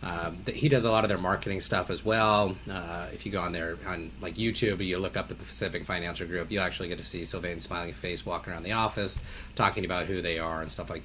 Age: 30-49